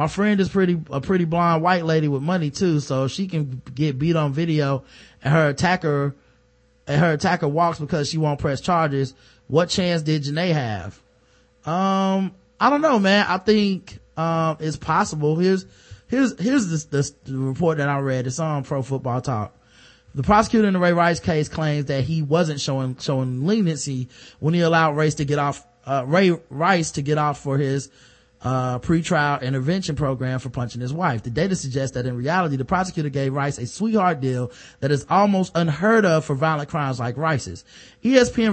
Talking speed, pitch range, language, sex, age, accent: 195 wpm, 135-180 Hz, English, male, 20-39, American